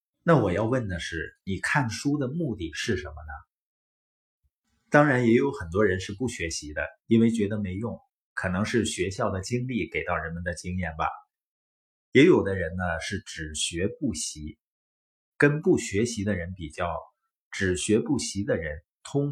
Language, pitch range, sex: Chinese, 90-120 Hz, male